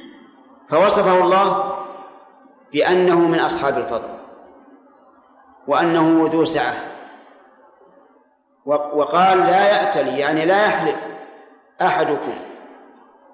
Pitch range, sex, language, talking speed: 160-205 Hz, male, Arabic, 70 wpm